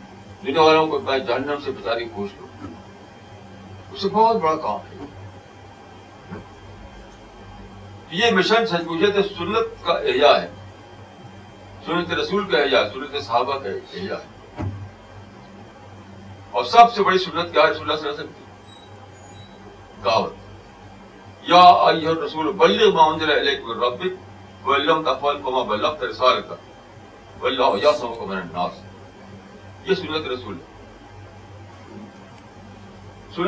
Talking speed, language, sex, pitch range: 70 wpm, Urdu, male, 100-145 Hz